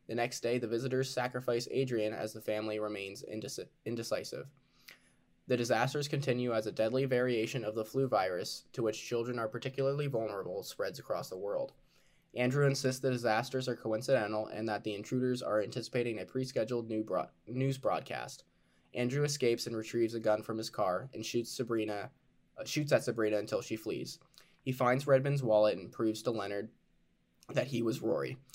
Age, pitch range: 10-29, 110-130 Hz